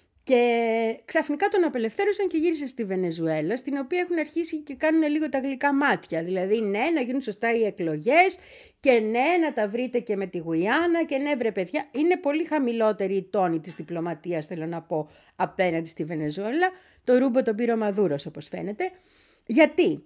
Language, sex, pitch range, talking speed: Greek, female, 190-295 Hz, 175 wpm